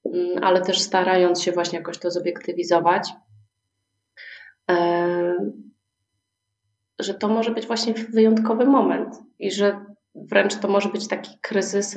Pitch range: 155-180 Hz